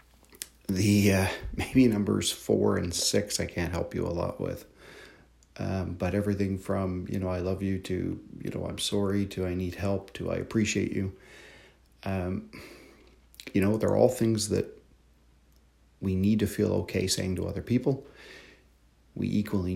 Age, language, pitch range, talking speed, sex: 40-59, English, 80-105 Hz, 165 wpm, male